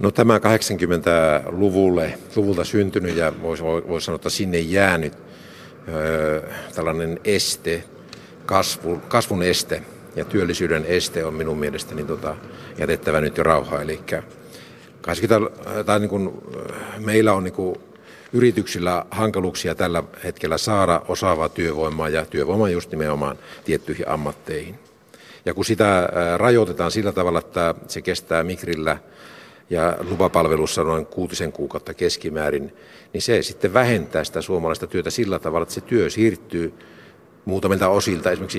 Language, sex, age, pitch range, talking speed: Finnish, male, 60-79, 80-100 Hz, 130 wpm